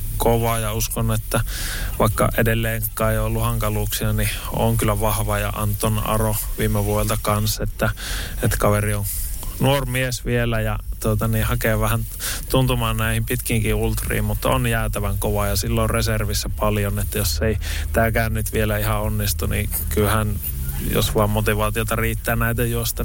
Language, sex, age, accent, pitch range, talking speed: Finnish, male, 20-39, native, 100-115 Hz, 155 wpm